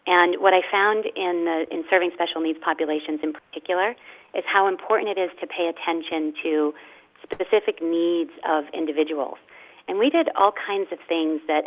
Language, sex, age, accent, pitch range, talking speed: English, female, 40-59, American, 155-175 Hz, 170 wpm